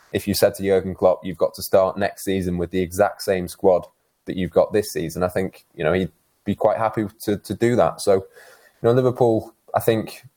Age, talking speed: 20-39, 230 wpm